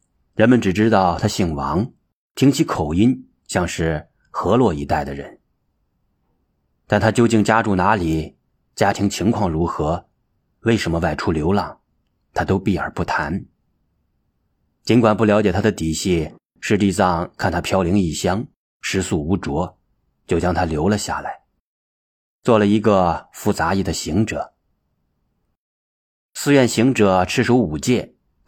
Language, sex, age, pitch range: Chinese, male, 30-49, 80-115 Hz